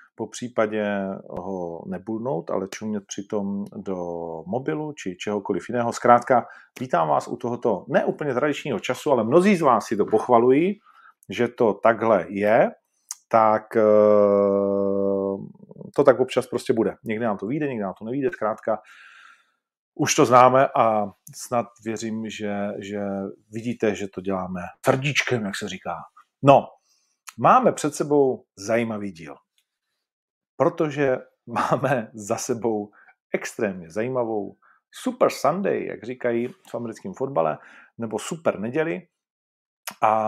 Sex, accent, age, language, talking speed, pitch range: male, native, 40-59, Czech, 125 wpm, 100-130 Hz